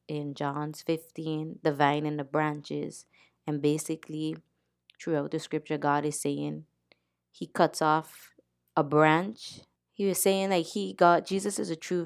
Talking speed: 160 wpm